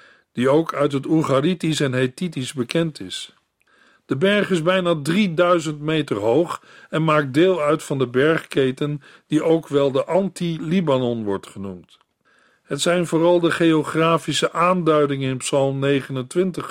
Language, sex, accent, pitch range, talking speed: Dutch, male, Dutch, 140-175 Hz, 140 wpm